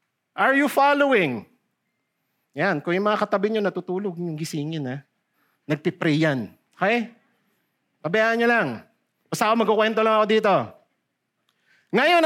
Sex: male